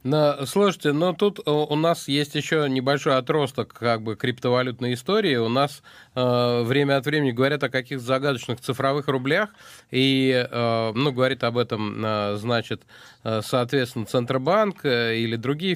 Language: Russian